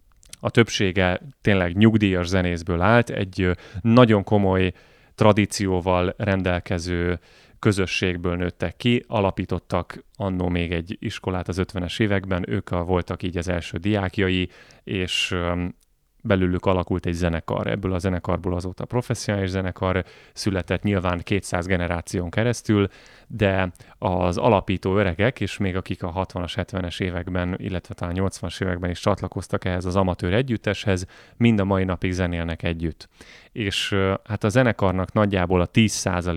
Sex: male